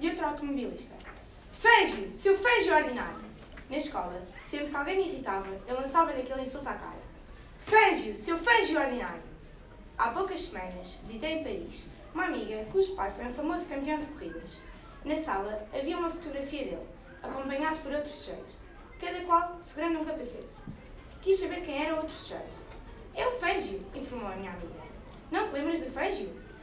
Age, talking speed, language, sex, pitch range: 20-39, 175 wpm, Portuguese, female, 255-335 Hz